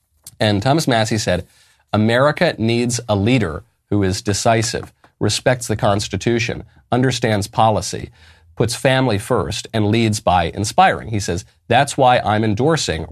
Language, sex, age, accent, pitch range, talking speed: English, male, 40-59, American, 95-125 Hz, 135 wpm